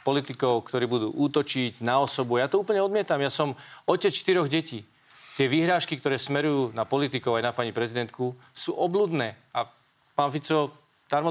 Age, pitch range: 40-59, 125-150 Hz